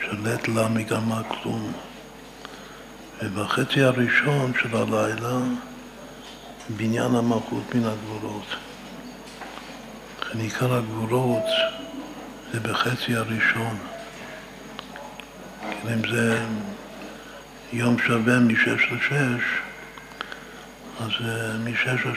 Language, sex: Hebrew, male